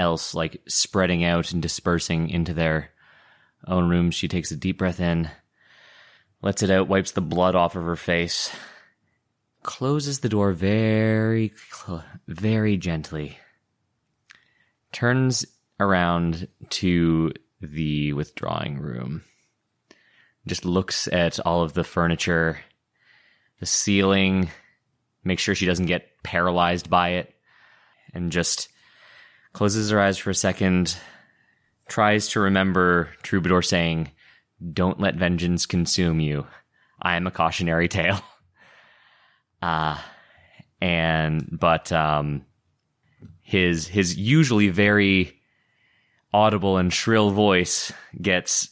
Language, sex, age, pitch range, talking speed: English, male, 20-39, 80-95 Hz, 115 wpm